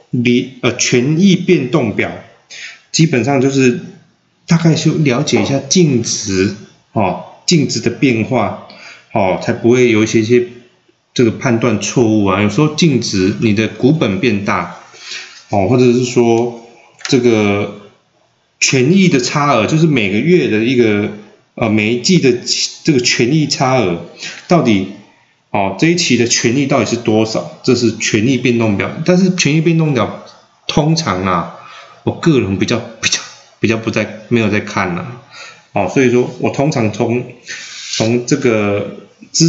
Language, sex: Chinese, male